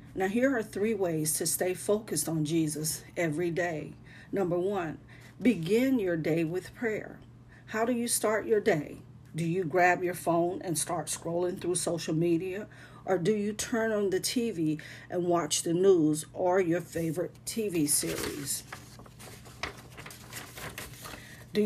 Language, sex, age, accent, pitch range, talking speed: English, female, 40-59, American, 155-195 Hz, 145 wpm